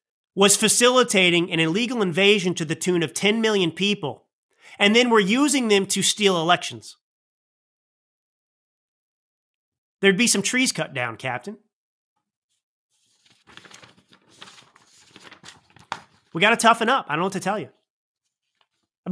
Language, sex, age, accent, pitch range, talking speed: English, male, 30-49, American, 185-225 Hz, 120 wpm